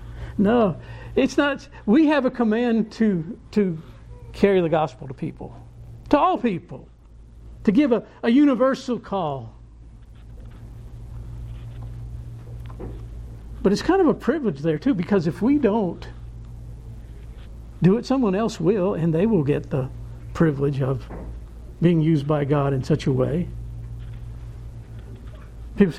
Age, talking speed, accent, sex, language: 60-79, 130 wpm, American, male, English